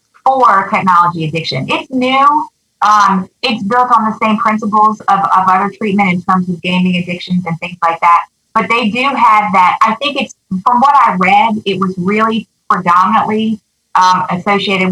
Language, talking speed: English, 175 wpm